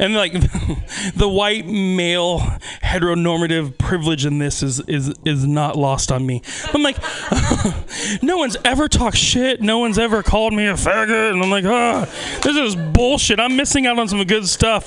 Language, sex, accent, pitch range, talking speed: English, male, American, 165-245 Hz, 180 wpm